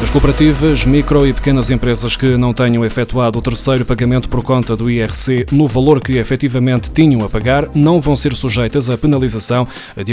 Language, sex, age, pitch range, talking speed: Portuguese, male, 20-39, 120-145 Hz, 185 wpm